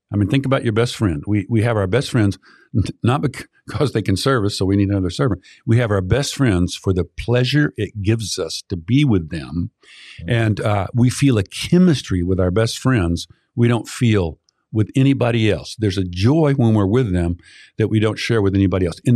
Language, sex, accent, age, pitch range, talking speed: English, male, American, 50-69, 95-120 Hz, 220 wpm